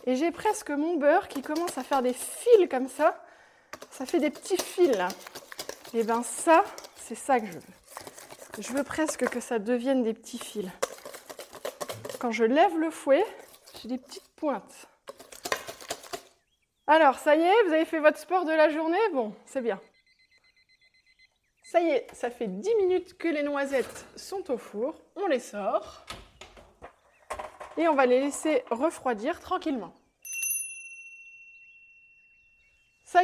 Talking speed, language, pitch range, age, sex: 150 wpm, French, 245-335 Hz, 20-39, female